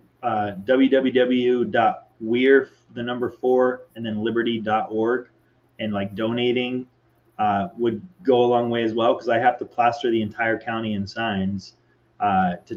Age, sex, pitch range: 20-39, male, 110-140 Hz